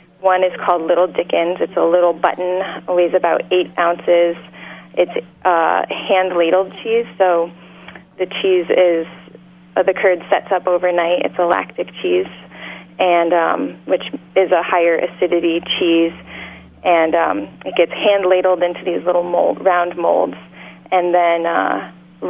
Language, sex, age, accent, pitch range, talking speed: English, female, 30-49, American, 170-185 Hz, 145 wpm